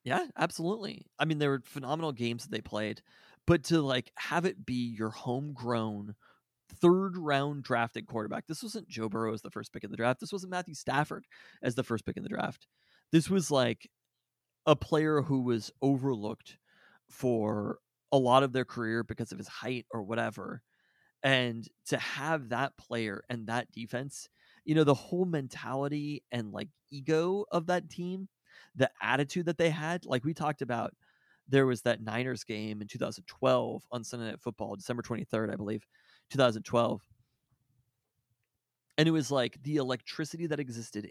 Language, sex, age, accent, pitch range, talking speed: English, male, 30-49, American, 115-150 Hz, 170 wpm